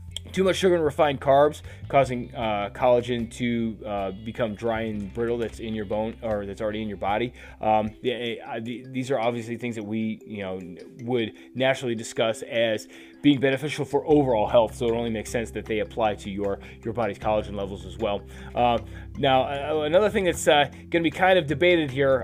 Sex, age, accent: male, 20-39, American